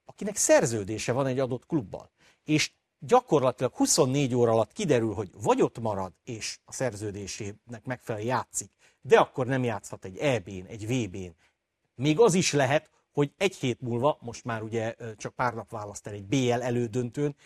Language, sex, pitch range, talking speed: Hungarian, male, 110-150 Hz, 165 wpm